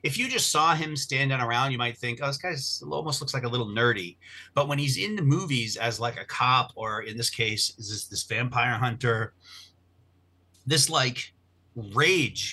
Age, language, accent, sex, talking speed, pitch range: 30-49, English, American, male, 190 wpm, 110-140 Hz